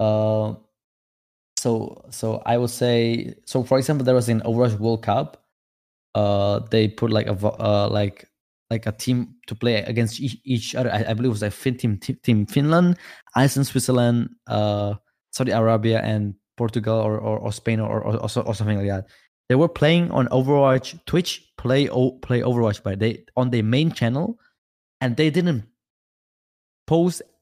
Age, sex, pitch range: 20-39, male, 105-130 Hz